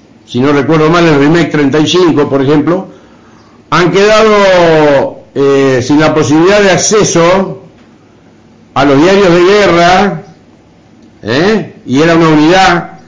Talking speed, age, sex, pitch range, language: 125 wpm, 60-79, male, 120-175 Hz, Spanish